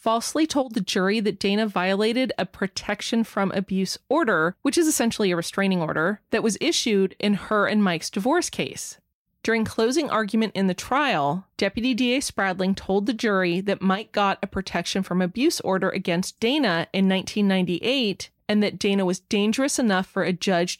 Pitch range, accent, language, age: 190-240 Hz, American, English, 30-49